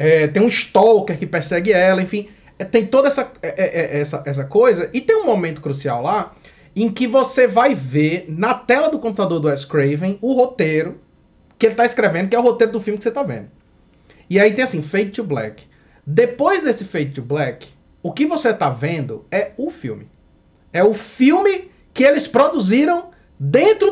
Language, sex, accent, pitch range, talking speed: Portuguese, male, Brazilian, 170-260 Hz, 195 wpm